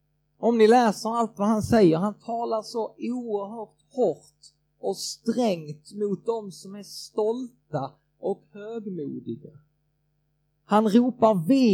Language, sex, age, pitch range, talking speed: Swedish, male, 30-49, 150-210 Hz, 125 wpm